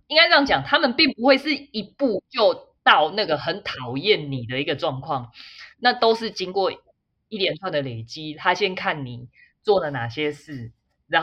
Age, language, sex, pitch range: 20-39, Chinese, female, 140-230 Hz